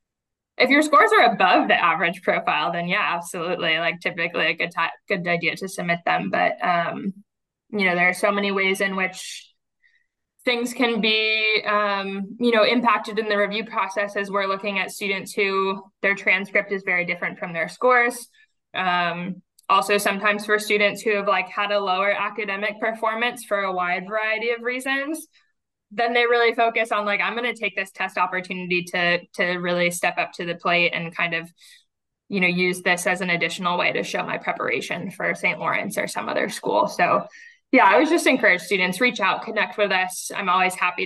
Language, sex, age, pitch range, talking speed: English, female, 20-39, 180-225 Hz, 195 wpm